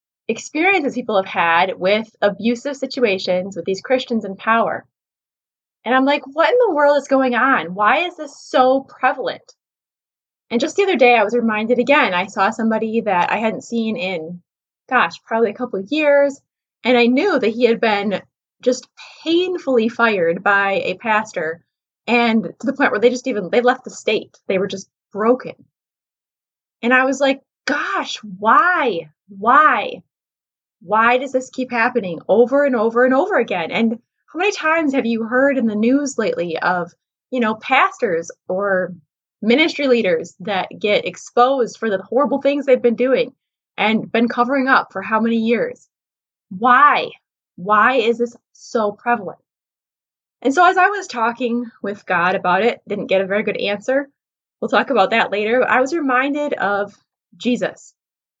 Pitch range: 210-265 Hz